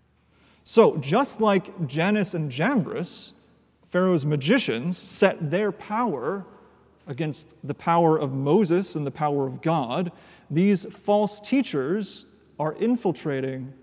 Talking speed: 115 wpm